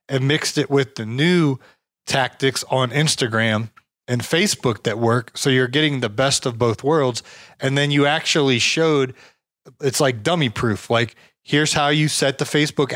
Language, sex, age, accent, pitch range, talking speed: English, male, 20-39, American, 120-150 Hz, 170 wpm